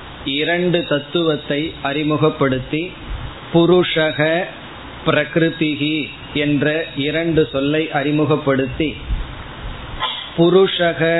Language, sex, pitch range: Tamil, male, 145-165 Hz